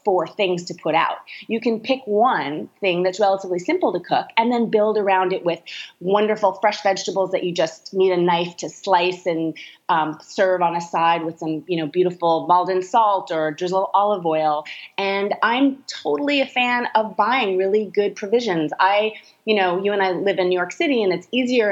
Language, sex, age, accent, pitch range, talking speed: English, female, 30-49, American, 170-205 Hz, 200 wpm